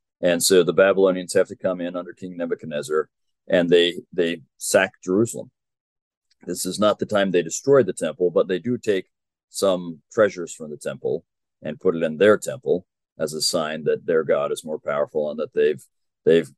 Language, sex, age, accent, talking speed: English, male, 40-59, American, 190 wpm